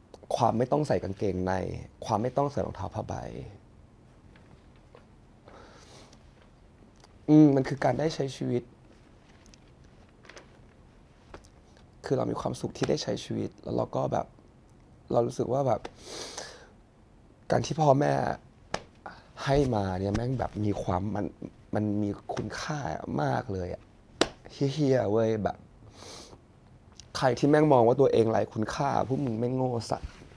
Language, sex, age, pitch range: English, male, 20-39, 100-130 Hz